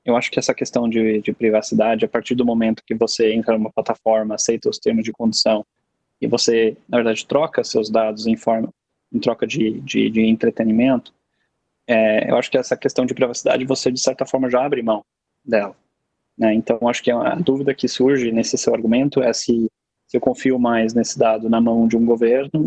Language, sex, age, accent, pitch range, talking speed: Portuguese, male, 20-39, Brazilian, 115-130 Hz, 205 wpm